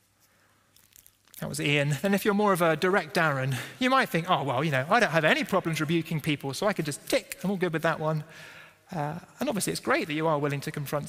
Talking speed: 255 wpm